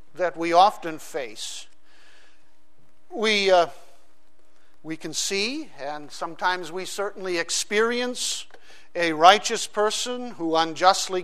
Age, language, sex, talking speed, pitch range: 50-69, English, male, 100 wpm, 170-220 Hz